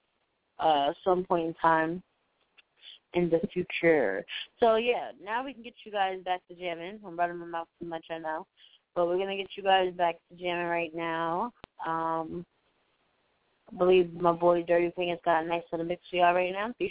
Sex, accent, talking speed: female, American, 200 wpm